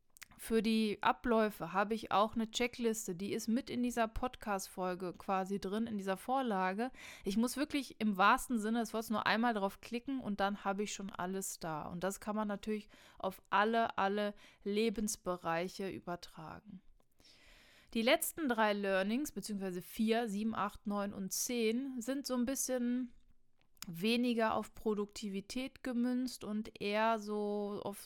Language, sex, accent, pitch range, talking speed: German, female, German, 190-230 Hz, 150 wpm